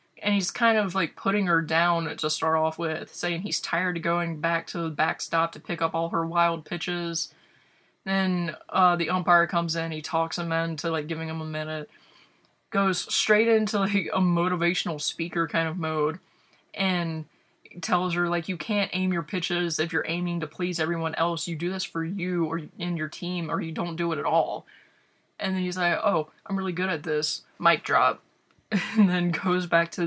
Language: English